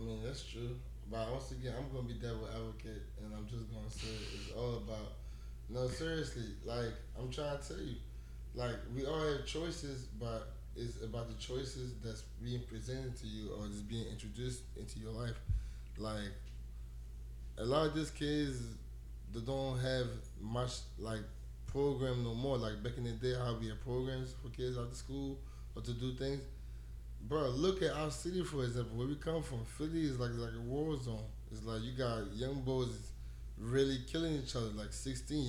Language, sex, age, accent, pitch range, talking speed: English, male, 20-39, American, 110-130 Hz, 190 wpm